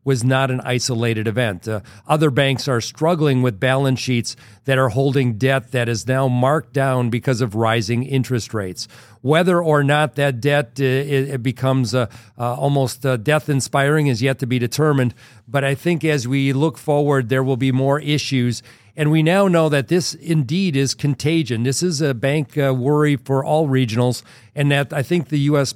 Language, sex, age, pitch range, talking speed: English, male, 50-69, 125-145 Hz, 185 wpm